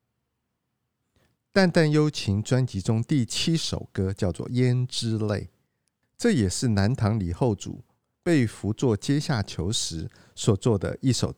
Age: 50-69